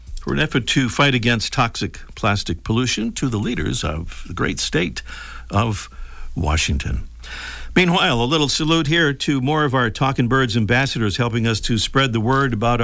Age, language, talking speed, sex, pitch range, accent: 60-79, English, 175 wpm, male, 90-135 Hz, American